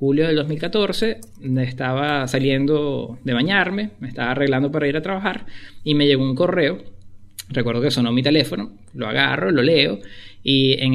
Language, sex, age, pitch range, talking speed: English, male, 20-39, 110-140 Hz, 165 wpm